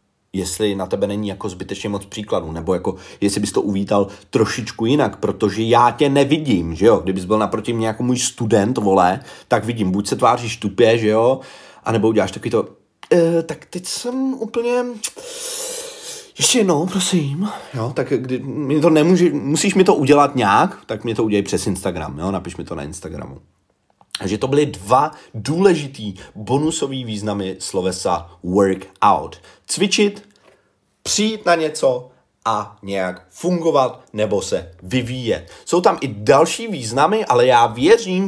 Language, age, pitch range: Czech, 30-49, 100-155 Hz